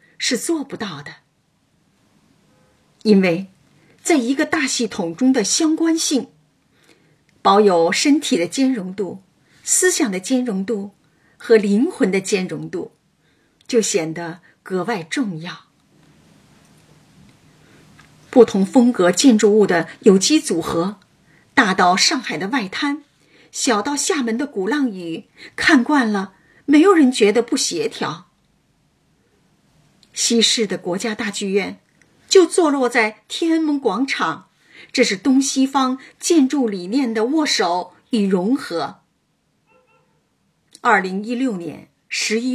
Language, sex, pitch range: Chinese, female, 195-285 Hz